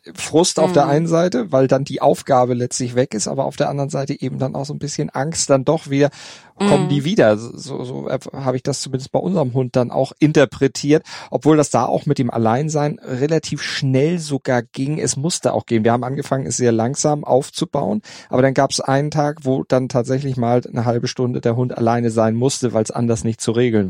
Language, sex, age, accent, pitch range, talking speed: German, male, 40-59, German, 120-145 Hz, 220 wpm